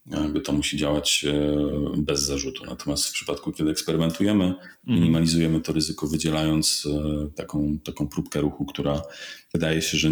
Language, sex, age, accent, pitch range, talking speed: Polish, male, 40-59, native, 75-80 Hz, 130 wpm